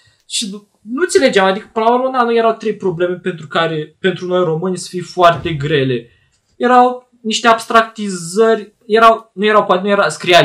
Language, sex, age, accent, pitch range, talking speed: Romanian, male, 20-39, native, 165-225 Hz, 180 wpm